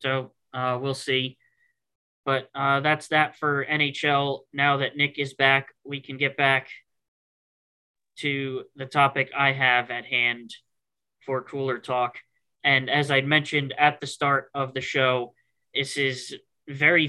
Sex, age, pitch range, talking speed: male, 20-39, 130-145 Hz, 150 wpm